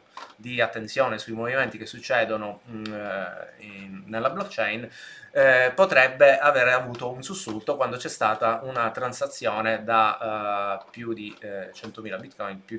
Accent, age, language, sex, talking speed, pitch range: native, 20-39, Italian, male, 135 wpm, 105-120 Hz